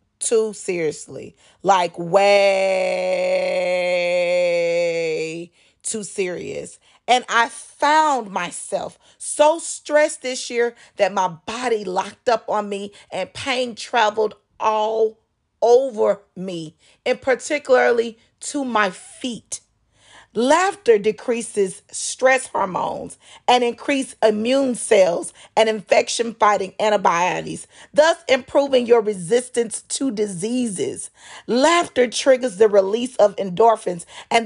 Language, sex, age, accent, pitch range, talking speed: English, female, 40-59, American, 195-255 Hz, 100 wpm